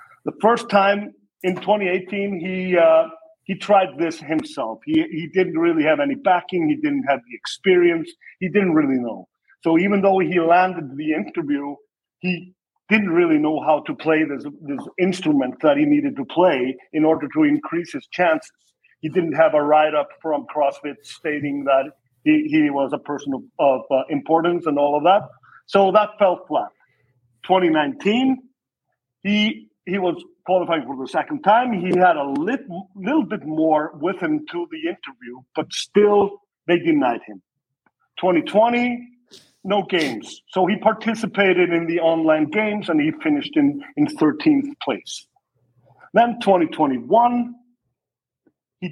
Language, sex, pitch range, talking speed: English, male, 155-240 Hz, 155 wpm